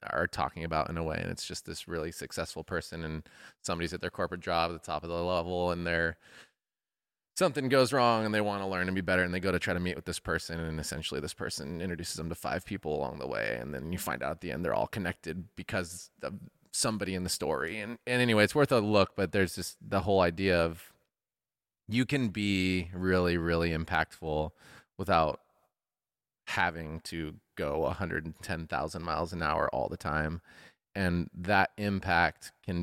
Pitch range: 80-95 Hz